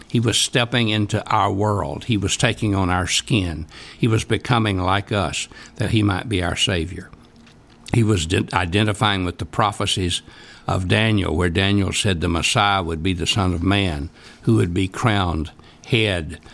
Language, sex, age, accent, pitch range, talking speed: English, male, 60-79, American, 90-110 Hz, 170 wpm